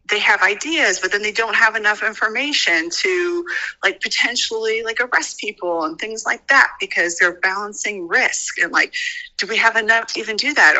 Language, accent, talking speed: English, American, 190 wpm